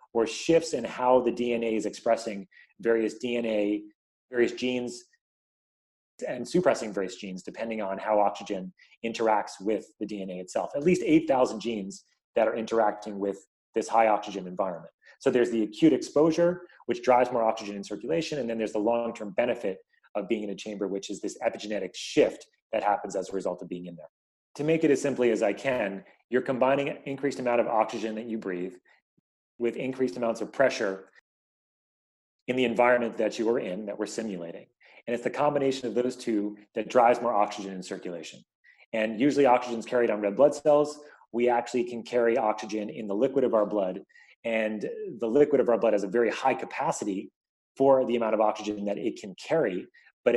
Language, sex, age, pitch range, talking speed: English, male, 30-49, 105-125 Hz, 190 wpm